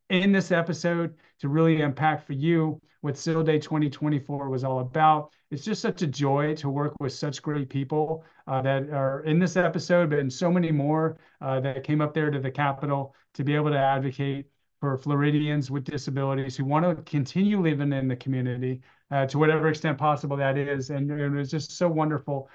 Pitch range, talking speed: 140-155 Hz, 200 wpm